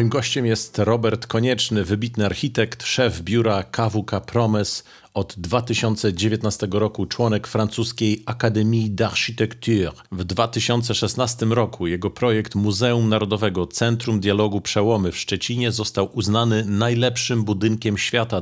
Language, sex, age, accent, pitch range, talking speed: Polish, male, 40-59, native, 100-115 Hz, 115 wpm